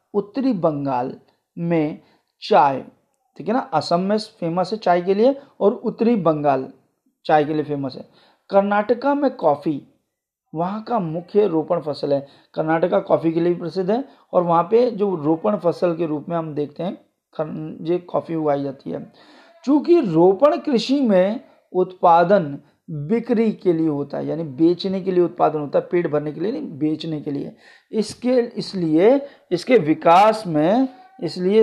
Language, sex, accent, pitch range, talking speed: Hindi, male, native, 155-215 Hz, 165 wpm